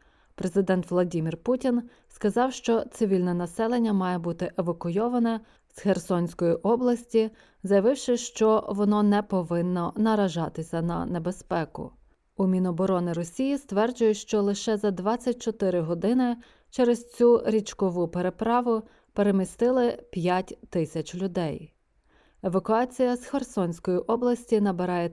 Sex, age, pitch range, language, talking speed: female, 20-39, 180-230 Hz, Ukrainian, 105 wpm